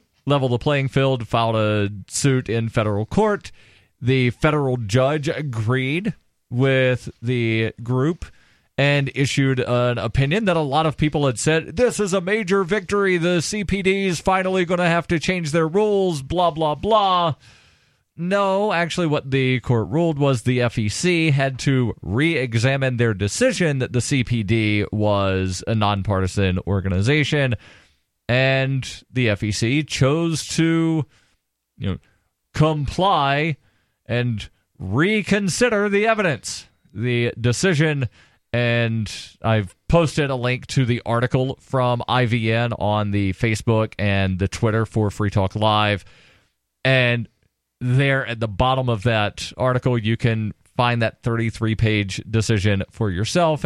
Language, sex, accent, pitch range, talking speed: English, male, American, 110-155 Hz, 130 wpm